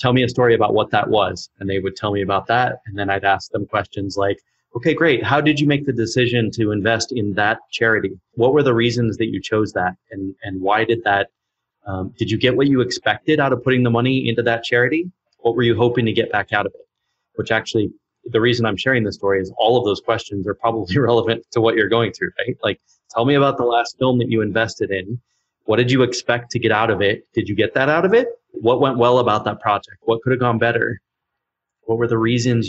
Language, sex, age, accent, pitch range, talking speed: English, male, 30-49, American, 105-120 Hz, 250 wpm